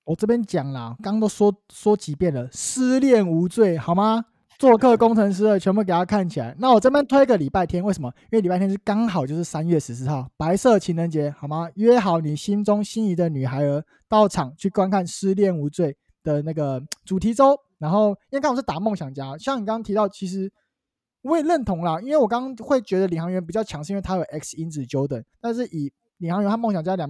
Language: Chinese